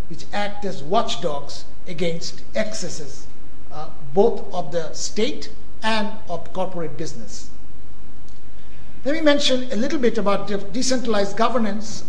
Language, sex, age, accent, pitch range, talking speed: English, male, 60-79, Indian, 180-230 Hz, 120 wpm